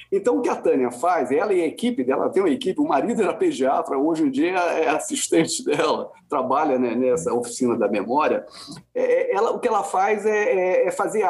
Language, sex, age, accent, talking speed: Portuguese, male, 40-59, Brazilian, 195 wpm